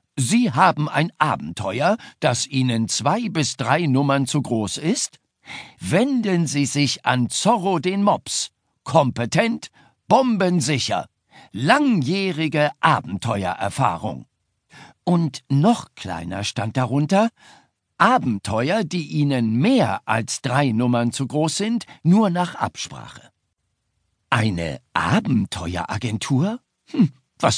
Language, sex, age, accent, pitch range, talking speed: German, male, 60-79, German, 115-175 Hz, 100 wpm